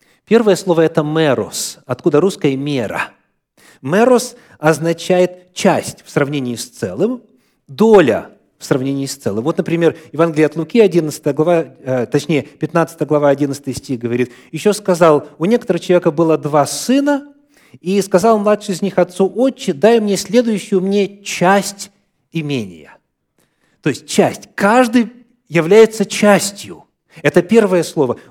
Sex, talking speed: male, 125 wpm